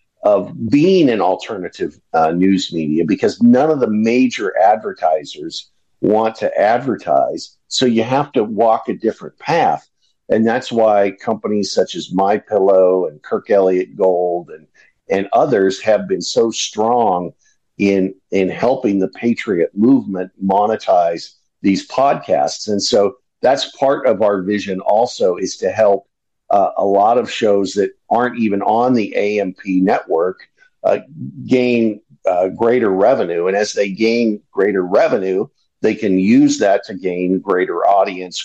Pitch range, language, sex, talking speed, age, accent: 90-115 Hz, English, male, 145 wpm, 50-69, American